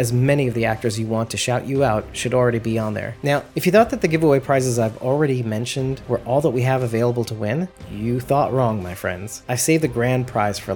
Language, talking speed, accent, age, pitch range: English, 255 wpm, American, 30-49, 115-145 Hz